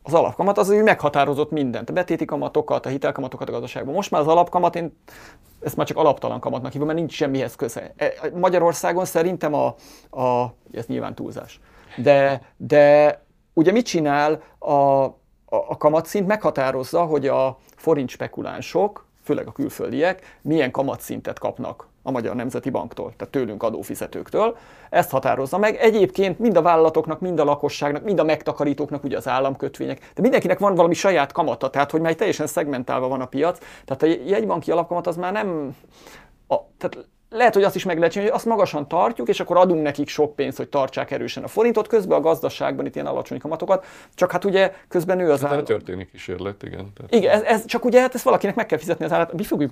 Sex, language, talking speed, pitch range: male, Hungarian, 180 wpm, 145-190 Hz